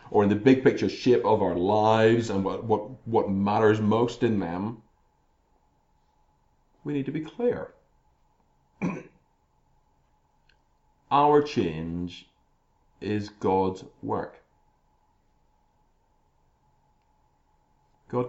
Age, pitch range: 40-59, 95-125 Hz